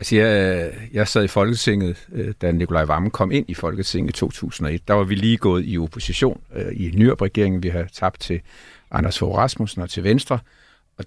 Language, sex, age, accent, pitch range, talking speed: Danish, male, 50-69, native, 95-120 Hz, 185 wpm